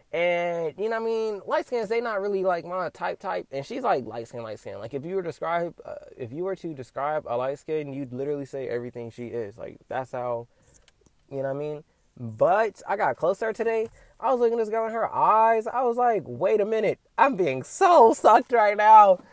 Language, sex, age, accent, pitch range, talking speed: English, male, 20-39, American, 125-185 Hz, 235 wpm